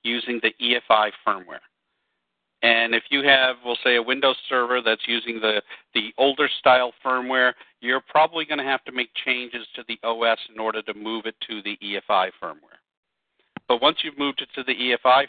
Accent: American